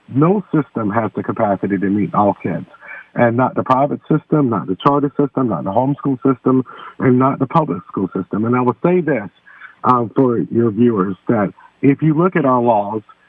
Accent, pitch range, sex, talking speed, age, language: American, 115-140 Hz, male, 200 wpm, 50-69, English